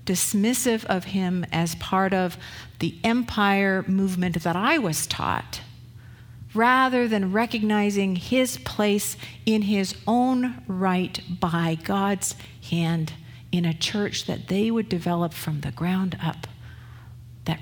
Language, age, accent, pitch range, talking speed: Italian, 50-69, American, 120-190 Hz, 125 wpm